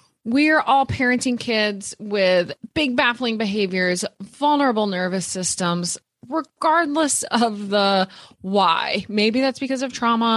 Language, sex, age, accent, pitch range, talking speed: English, female, 20-39, American, 185-255 Hz, 120 wpm